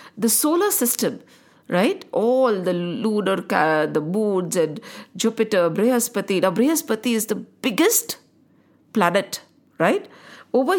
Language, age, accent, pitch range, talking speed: English, 50-69, Indian, 215-285 Hz, 110 wpm